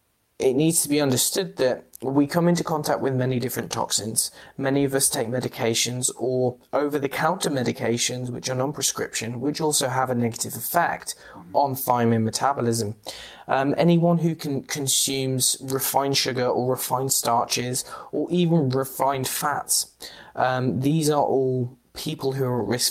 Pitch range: 120-145 Hz